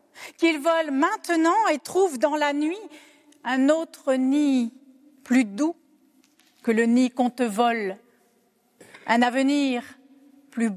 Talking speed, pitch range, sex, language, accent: 125 wpm, 245-310 Hz, female, French, French